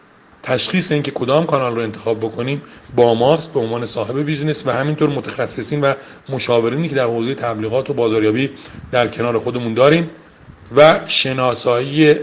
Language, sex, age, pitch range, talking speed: Persian, male, 40-59, 120-155 Hz, 150 wpm